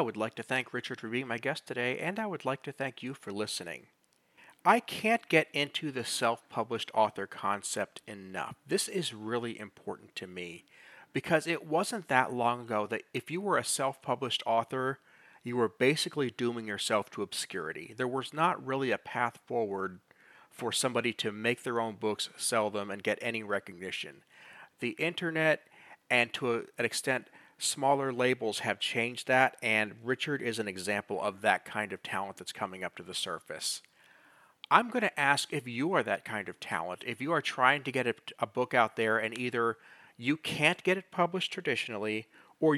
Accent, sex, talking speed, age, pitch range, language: American, male, 185 wpm, 40-59, 110-145 Hz, English